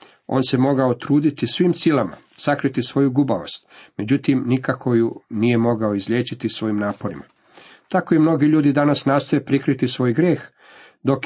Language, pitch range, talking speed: Croatian, 115-140 Hz, 145 wpm